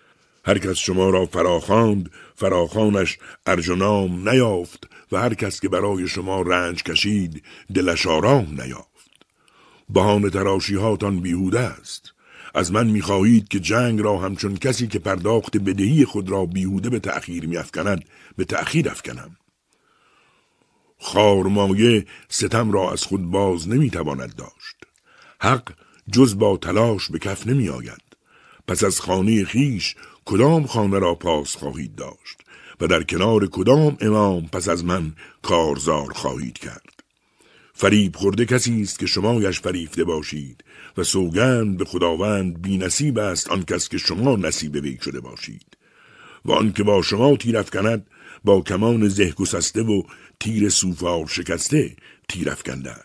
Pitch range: 90-110 Hz